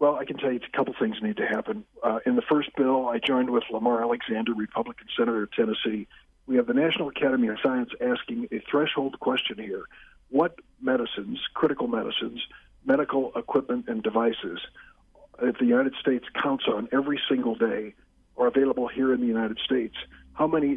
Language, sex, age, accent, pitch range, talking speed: English, male, 50-69, American, 120-160 Hz, 180 wpm